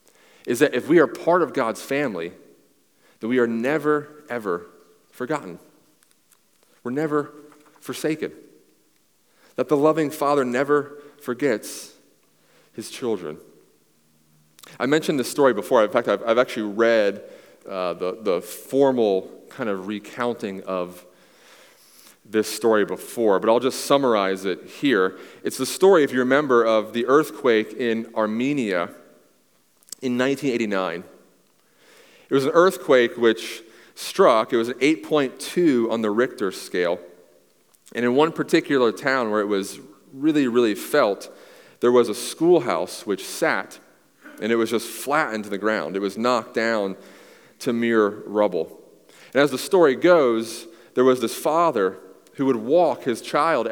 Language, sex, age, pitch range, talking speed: English, male, 30-49, 105-145 Hz, 140 wpm